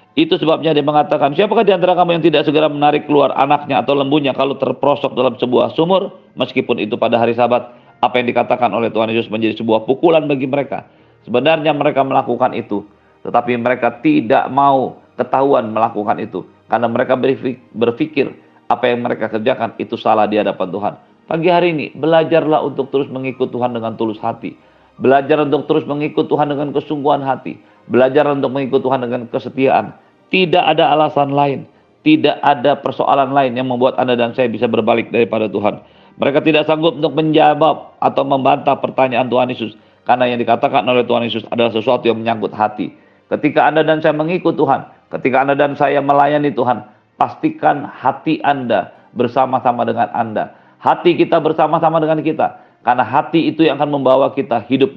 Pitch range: 120-155 Hz